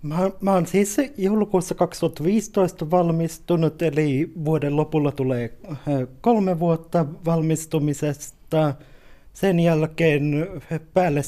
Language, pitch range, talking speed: Finnish, 145-175 Hz, 80 wpm